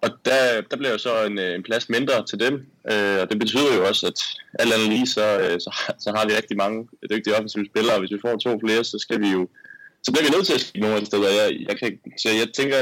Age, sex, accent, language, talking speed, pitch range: 20-39, male, native, Danish, 255 wpm, 95-115 Hz